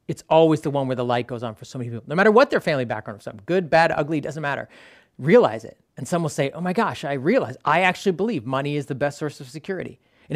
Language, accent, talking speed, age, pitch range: English, American, 280 wpm, 30-49, 140-185 Hz